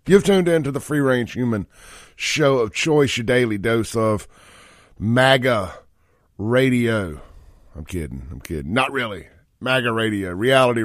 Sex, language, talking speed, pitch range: male, English, 145 wpm, 95-135 Hz